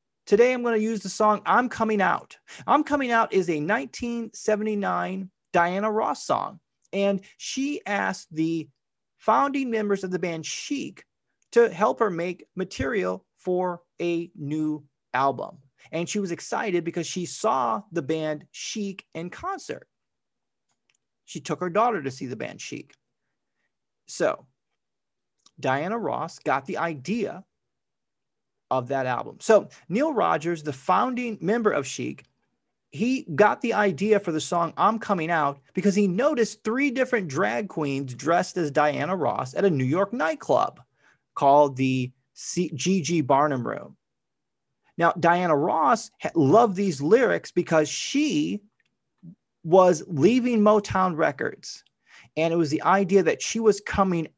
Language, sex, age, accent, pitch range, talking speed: English, male, 30-49, American, 155-215 Hz, 140 wpm